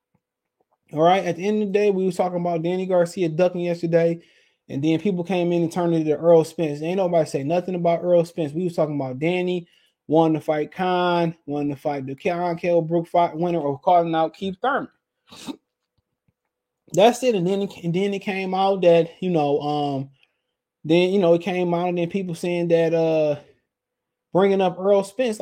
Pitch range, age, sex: 165-220 Hz, 20-39, male